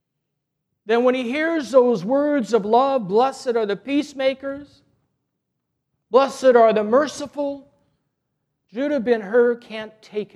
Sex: male